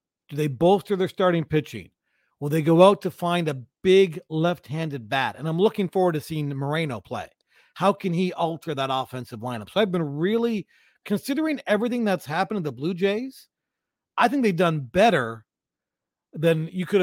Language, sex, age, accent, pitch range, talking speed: English, male, 40-59, American, 140-190 Hz, 180 wpm